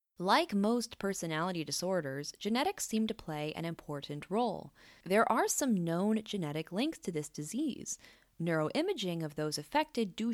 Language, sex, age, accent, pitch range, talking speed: English, female, 20-39, American, 155-225 Hz, 145 wpm